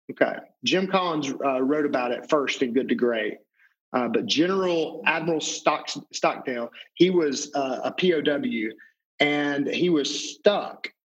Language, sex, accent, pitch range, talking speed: English, male, American, 135-175 Hz, 145 wpm